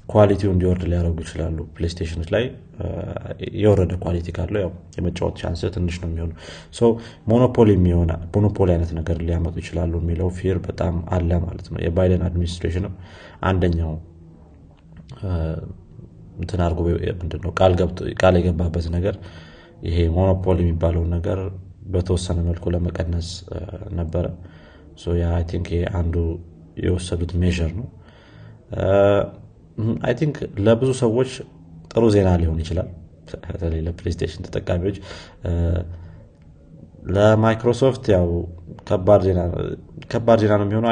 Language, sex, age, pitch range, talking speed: Amharic, male, 30-49, 85-100 Hz, 95 wpm